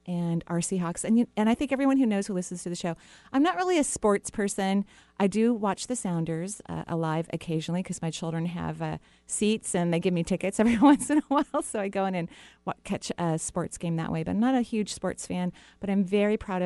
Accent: American